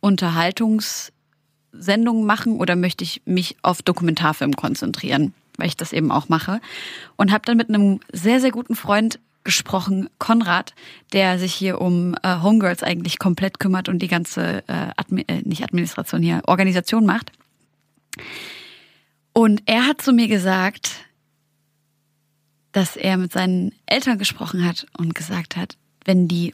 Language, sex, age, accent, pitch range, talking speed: German, female, 20-39, German, 175-220 Hz, 140 wpm